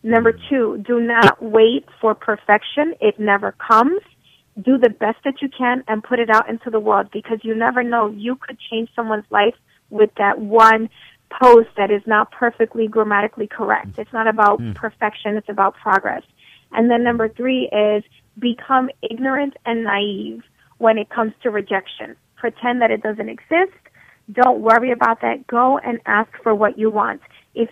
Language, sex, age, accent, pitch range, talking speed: English, female, 30-49, American, 210-240 Hz, 175 wpm